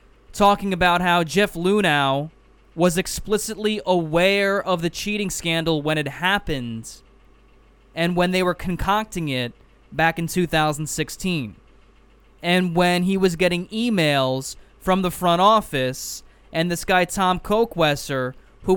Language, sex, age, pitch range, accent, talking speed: English, male, 20-39, 150-190 Hz, American, 130 wpm